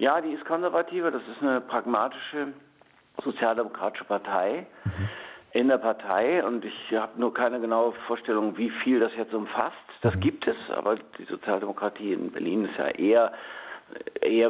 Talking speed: 155 wpm